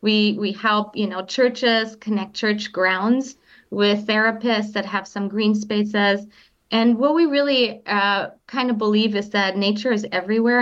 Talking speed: 165 wpm